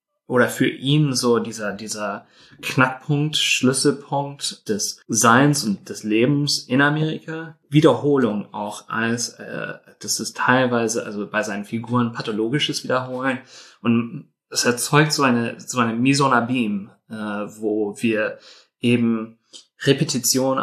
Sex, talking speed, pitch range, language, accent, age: male, 115 wpm, 115-145 Hz, German, German, 30-49